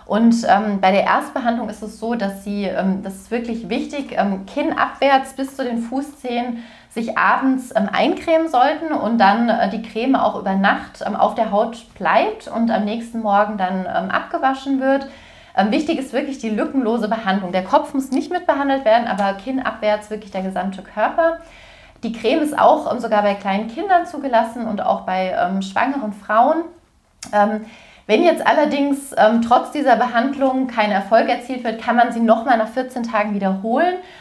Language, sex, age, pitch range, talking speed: German, female, 30-49, 205-270 Hz, 180 wpm